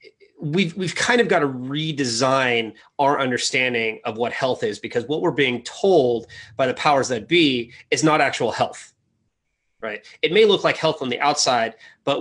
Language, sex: English, male